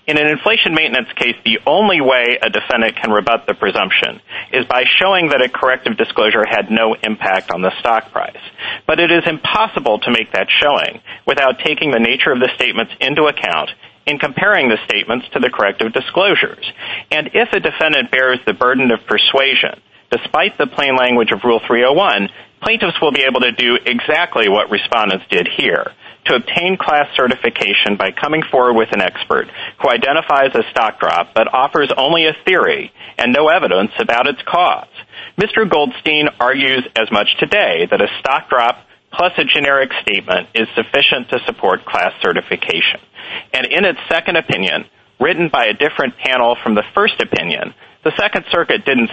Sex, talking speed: male, 175 wpm